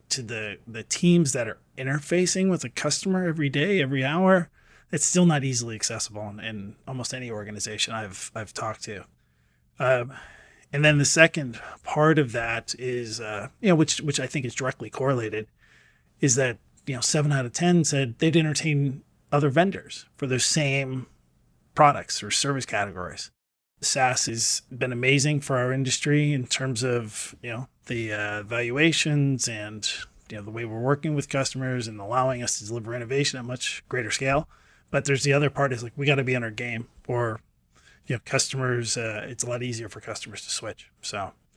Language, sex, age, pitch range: English, male, 30-49, 110-140 Hz